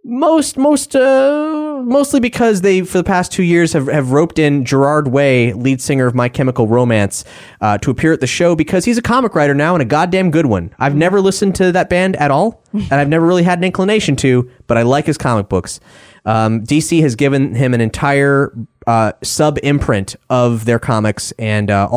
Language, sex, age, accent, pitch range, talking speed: English, male, 20-39, American, 115-150 Hz, 210 wpm